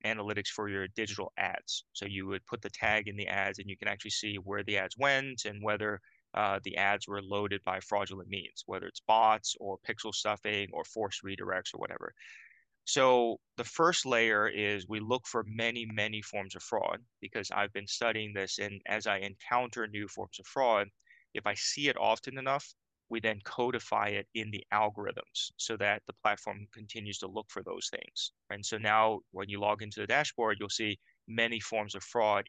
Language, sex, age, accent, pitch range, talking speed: English, male, 20-39, American, 100-115 Hz, 200 wpm